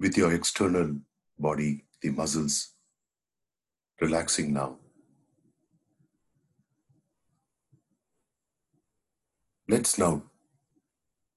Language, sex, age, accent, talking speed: English, male, 60-79, Indian, 55 wpm